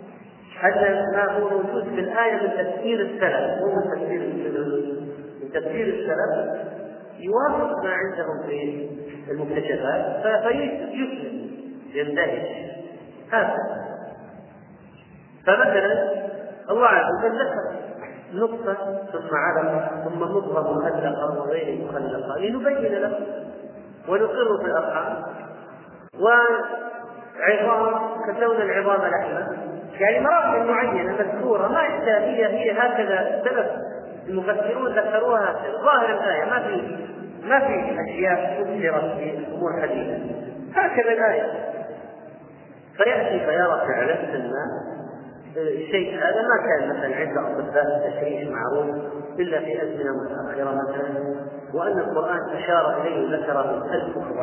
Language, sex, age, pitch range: Arabic, male, 40-59, 155-230 Hz